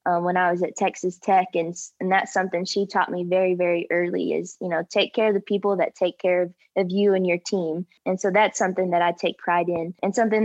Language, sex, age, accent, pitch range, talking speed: English, female, 20-39, American, 180-205 Hz, 260 wpm